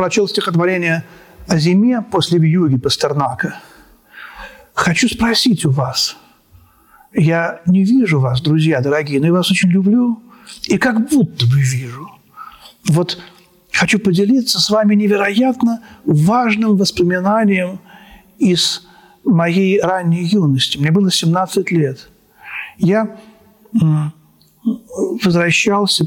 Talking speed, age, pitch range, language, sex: 100 wpm, 50-69, 160-215 Hz, Russian, male